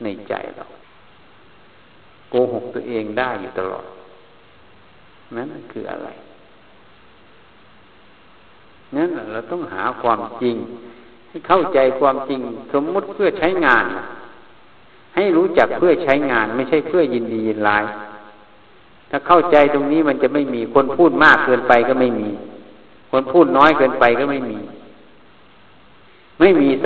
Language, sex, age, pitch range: Thai, male, 60-79, 110-145 Hz